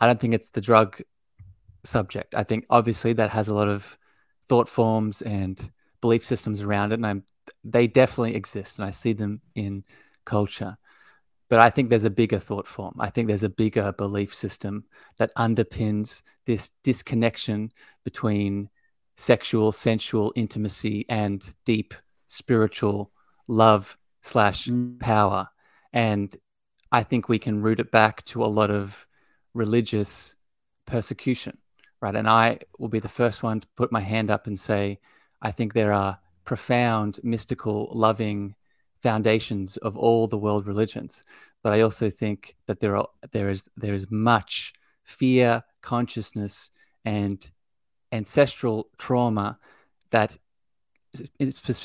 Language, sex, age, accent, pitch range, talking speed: English, male, 20-39, Australian, 105-120 Hz, 140 wpm